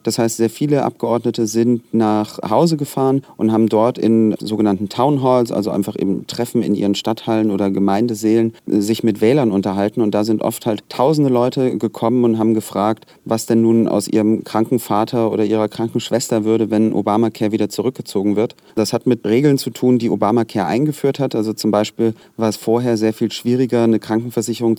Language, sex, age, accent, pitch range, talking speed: German, male, 30-49, German, 105-120 Hz, 185 wpm